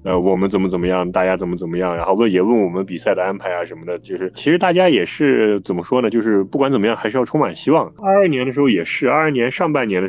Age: 20-39